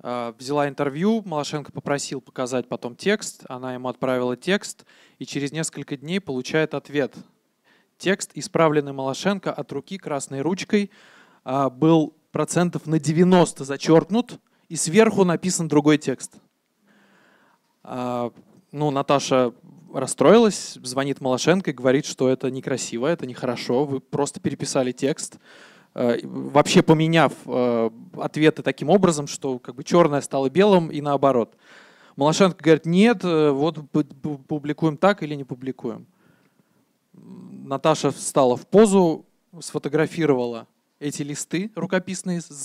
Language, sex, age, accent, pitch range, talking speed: Russian, male, 20-39, native, 135-170 Hz, 115 wpm